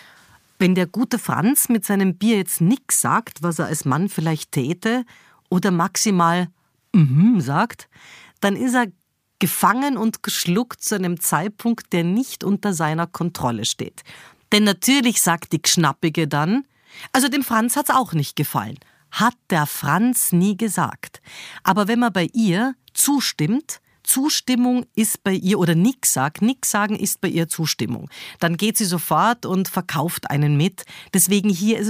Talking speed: 160 wpm